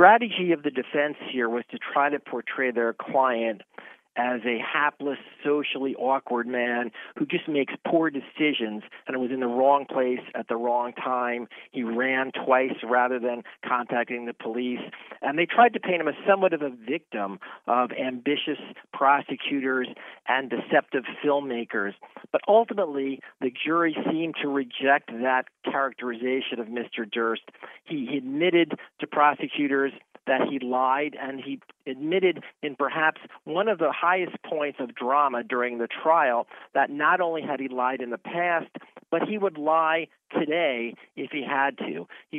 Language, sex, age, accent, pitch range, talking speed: English, male, 40-59, American, 125-150 Hz, 155 wpm